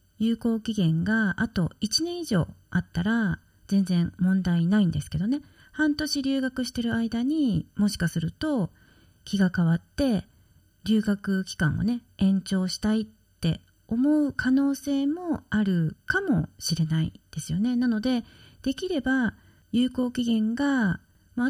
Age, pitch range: 40-59, 170-255 Hz